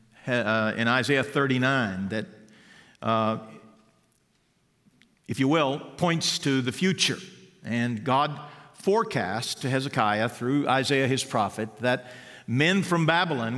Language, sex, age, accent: English, male, 50-69, American